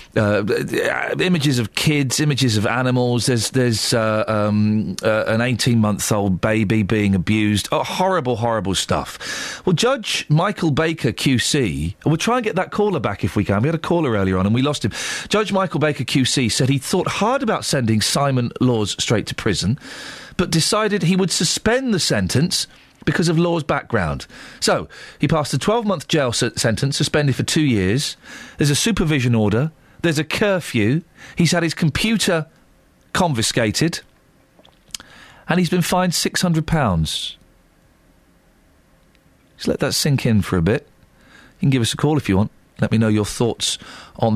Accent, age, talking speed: British, 40-59, 170 wpm